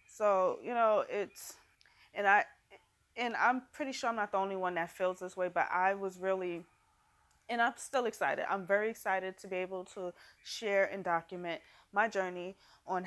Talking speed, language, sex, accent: 185 wpm, English, female, American